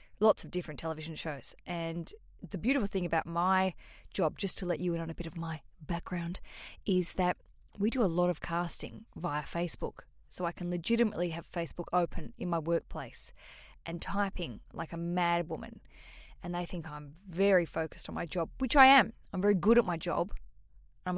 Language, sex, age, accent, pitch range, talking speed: English, female, 20-39, Australian, 170-205 Hz, 195 wpm